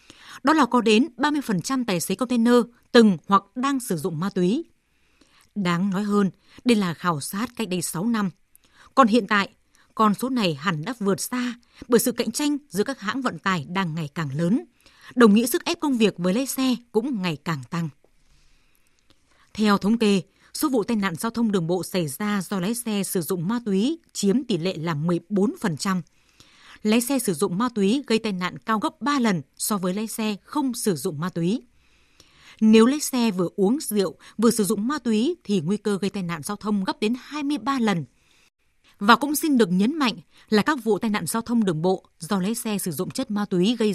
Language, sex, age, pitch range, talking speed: Vietnamese, female, 20-39, 190-240 Hz, 215 wpm